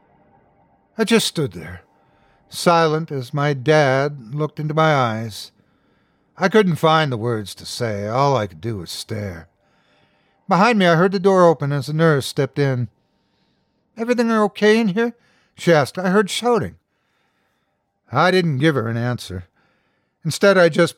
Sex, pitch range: male, 115-155 Hz